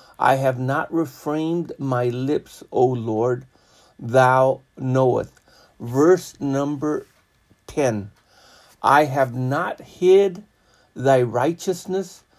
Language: English